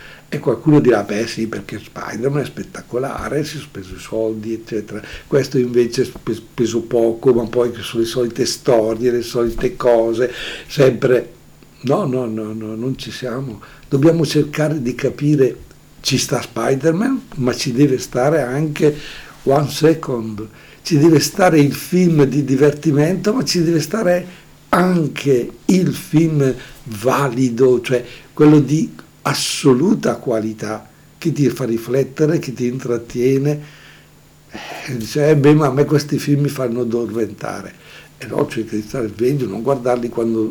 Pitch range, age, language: 115-145 Hz, 60-79, Italian